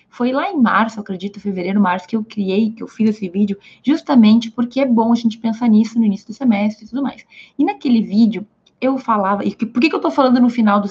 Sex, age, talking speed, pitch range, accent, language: female, 20-39, 255 wpm, 210-260 Hz, Brazilian, Portuguese